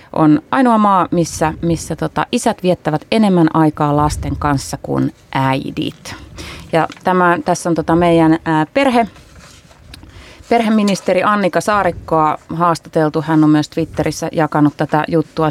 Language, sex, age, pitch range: Finnish, female, 30-49, 150-175 Hz